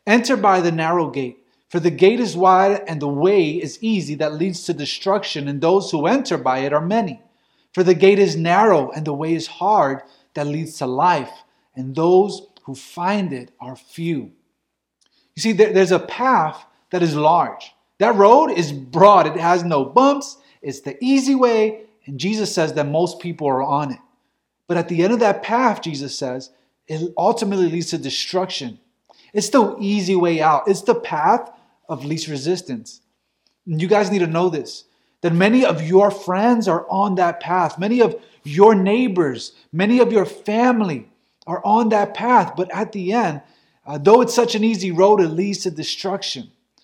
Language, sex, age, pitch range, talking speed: English, male, 30-49, 165-225 Hz, 185 wpm